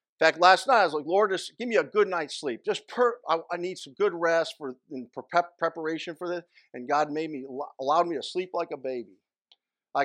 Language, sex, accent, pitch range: English, male, American, 145-225 Hz